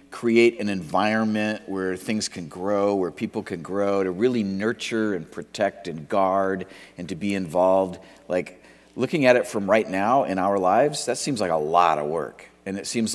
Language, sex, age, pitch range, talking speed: English, male, 50-69, 95-125 Hz, 190 wpm